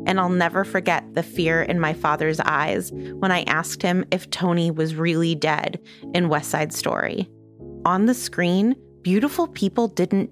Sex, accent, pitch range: female, American, 160-215 Hz